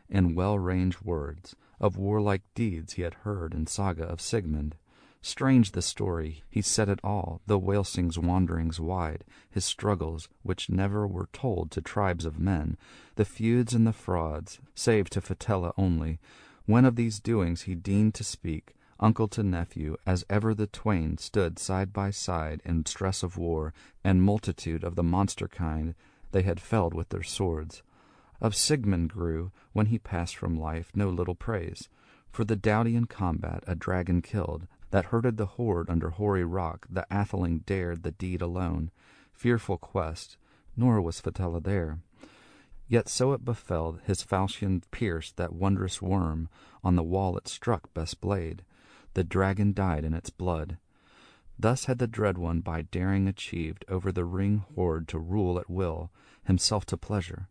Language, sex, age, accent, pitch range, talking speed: English, male, 40-59, American, 85-105 Hz, 165 wpm